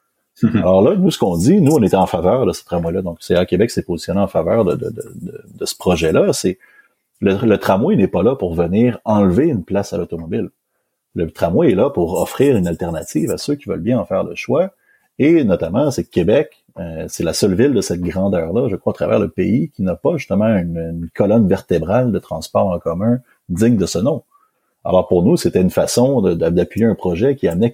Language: French